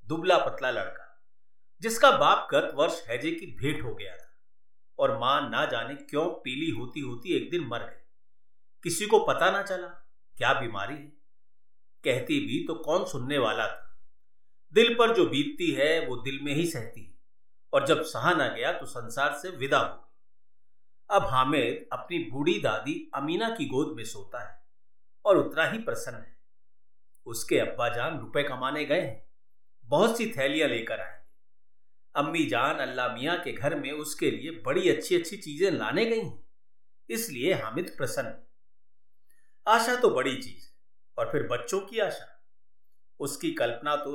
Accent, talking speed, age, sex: native, 135 wpm, 50-69, male